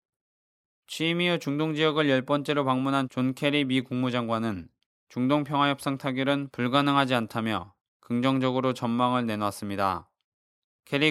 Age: 20-39